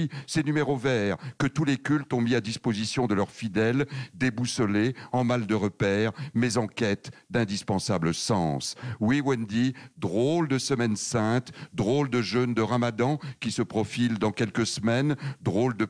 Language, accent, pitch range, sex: French, French, 110-135 Hz, male